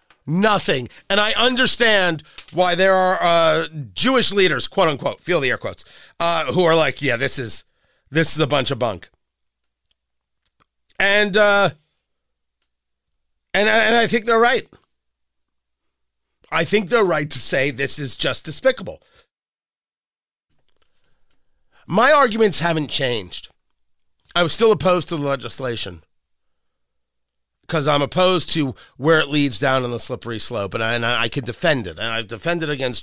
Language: English